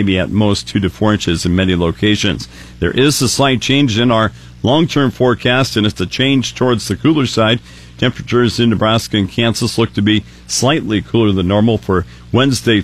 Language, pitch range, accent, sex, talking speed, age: English, 100-120 Hz, American, male, 190 wpm, 50-69